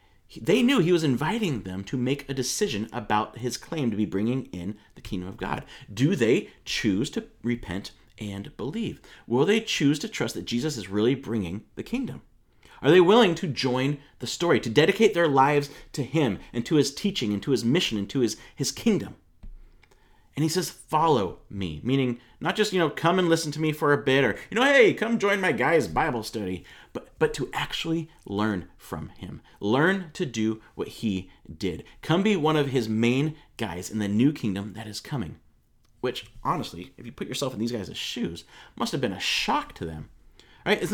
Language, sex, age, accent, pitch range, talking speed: English, male, 30-49, American, 110-165 Hz, 205 wpm